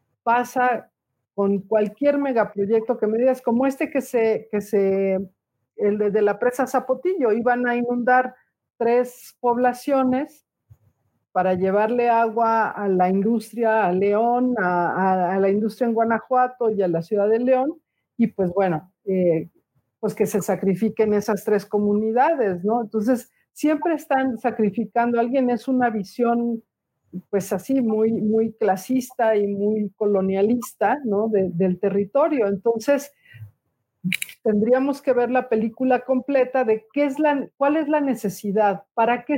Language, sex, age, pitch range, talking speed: Spanish, female, 50-69, 195-250 Hz, 145 wpm